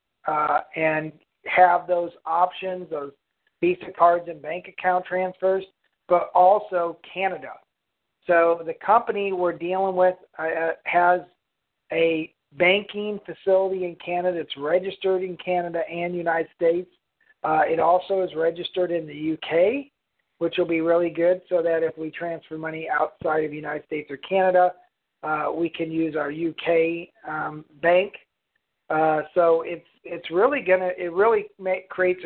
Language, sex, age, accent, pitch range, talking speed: English, male, 40-59, American, 165-190 Hz, 145 wpm